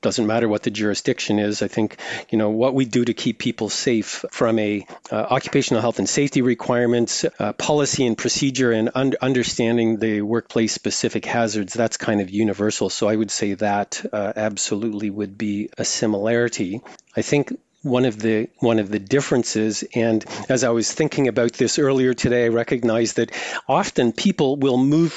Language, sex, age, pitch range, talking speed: English, male, 40-59, 110-125 Hz, 180 wpm